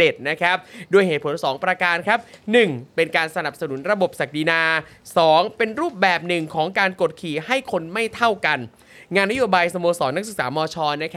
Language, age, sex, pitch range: Thai, 20-39, male, 165-205 Hz